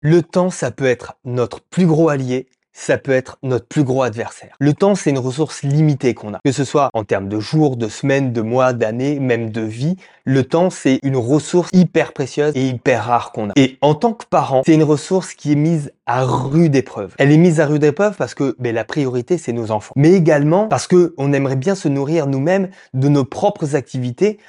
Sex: male